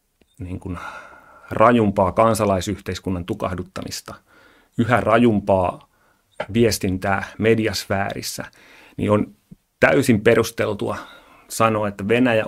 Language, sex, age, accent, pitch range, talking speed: Finnish, male, 30-49, native, 100-115 Hz, 75 wpm